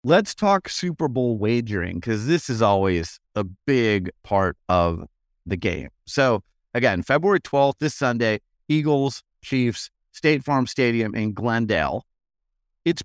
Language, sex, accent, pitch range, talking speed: English, male, American, 105-150 Hz, 135 wpm